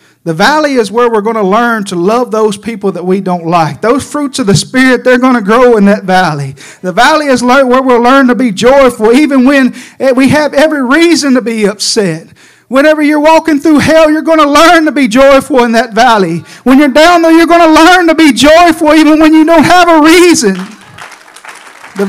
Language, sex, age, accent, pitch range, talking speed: English, male, 50-69, American, 180-255 Hz, 215 wpm